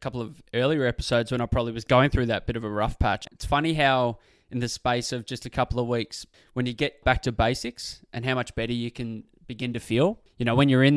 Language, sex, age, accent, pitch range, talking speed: English, male, 20-39, Australian, 115-135 Hz, 265 wpm